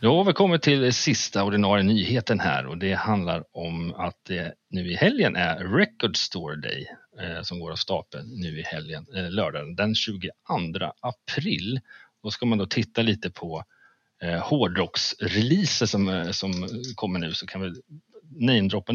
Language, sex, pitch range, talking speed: Swedish, male, 95-125 Hz, 170 wpm